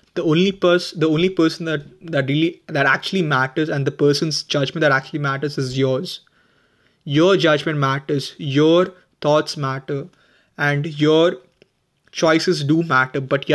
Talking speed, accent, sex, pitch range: 150 wpm, Indian, male, 140-175 Hz